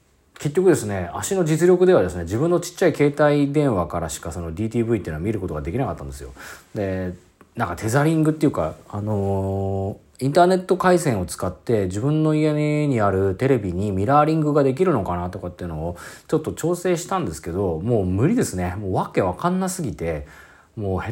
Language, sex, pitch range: Japanese, male, 85-145 Hz